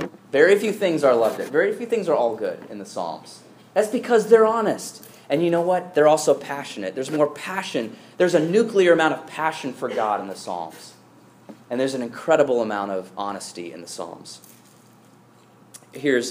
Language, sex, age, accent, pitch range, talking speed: English, male, 20-39, American, 115-175 Hz, 185 wpm